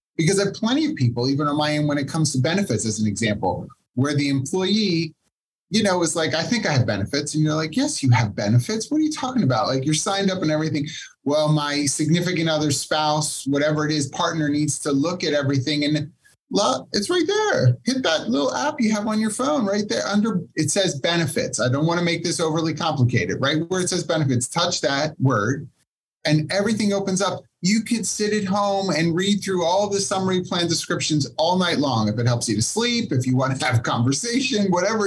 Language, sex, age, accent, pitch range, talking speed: English, male, 30-49, American, 130-185 Hz, 225 wpm